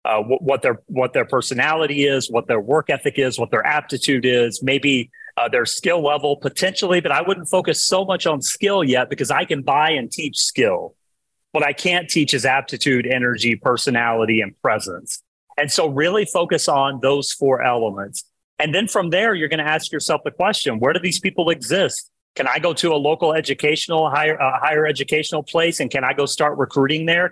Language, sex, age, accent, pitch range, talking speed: English, male, 30-49, American, 135-170 Hz, 200 wpm